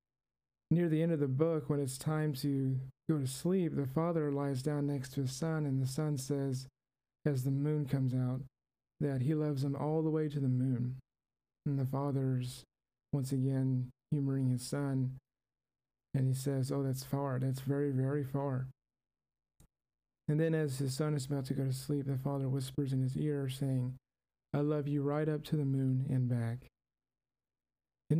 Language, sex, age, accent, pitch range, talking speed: English, male, 40-59, American, 130-150 Hz, 185 wpm